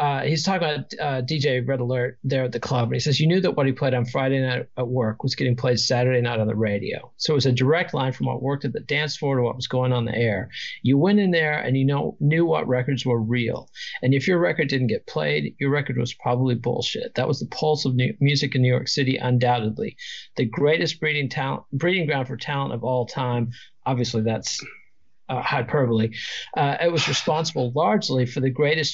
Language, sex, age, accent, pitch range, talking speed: English, male, 50-69, American, 120-145 Hz, 235 wpm